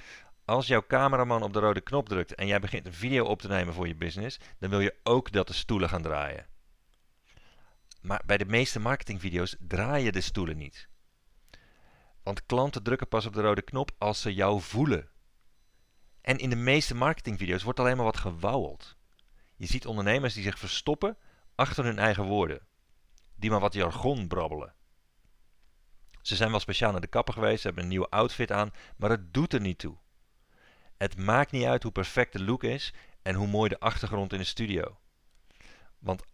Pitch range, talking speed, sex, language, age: 95-125 Hz, 185 wpm, male, Dutch, 40-59